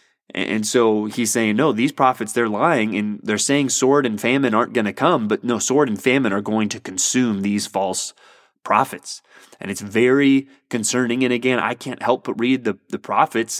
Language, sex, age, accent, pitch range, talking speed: English, male, 20-39, American, 110-130 Hz, 200 wpm